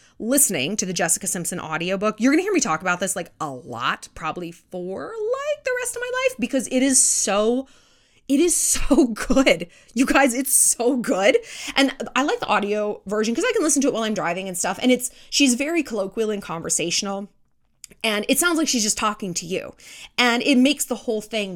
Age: 20-39